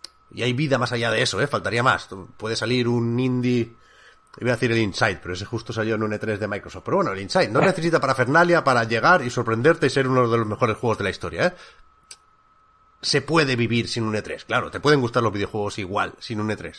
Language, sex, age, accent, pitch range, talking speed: Spanish, male, 30-49, Spanish, 110-155 Hz, 240 wpm